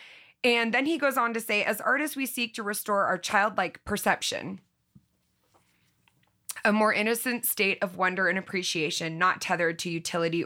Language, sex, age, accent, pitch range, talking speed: English, female, 20-39, American, 180-230 Hz, 160 wpm